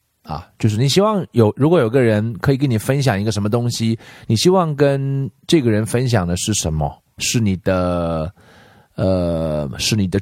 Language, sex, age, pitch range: Chinese, male, 30-49, 95-125 Hz